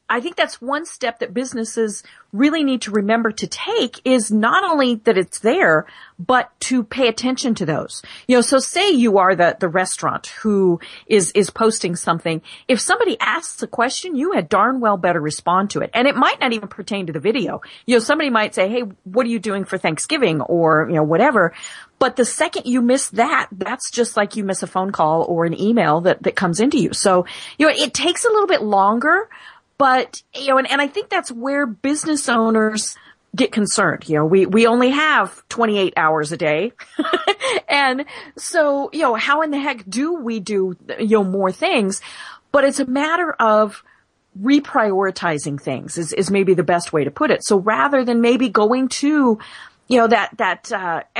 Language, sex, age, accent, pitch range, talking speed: English, female, 40-59, American, 190-270 Hz, 205 wpm